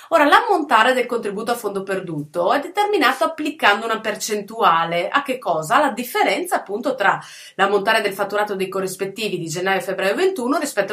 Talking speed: 160 wpm